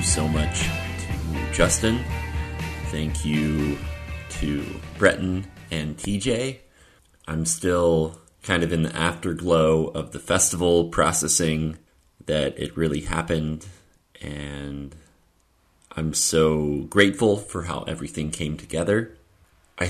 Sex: male